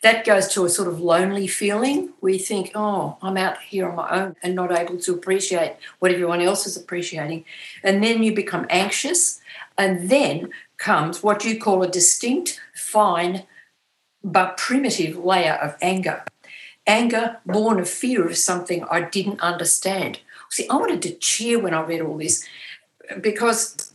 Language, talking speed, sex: English, 165 wpm, female